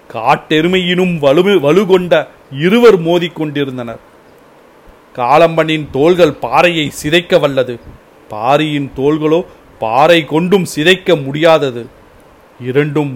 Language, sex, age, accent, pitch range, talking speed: Tamil, male, 40-59, native, 135-170 Hz, 80 wpm